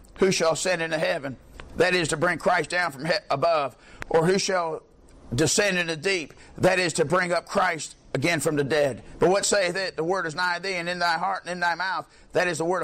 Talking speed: 240 wpm